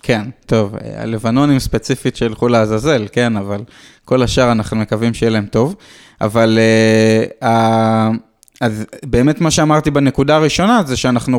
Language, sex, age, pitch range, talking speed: Hebrew, male, 20-39, 115-150 Hz, 135 wpm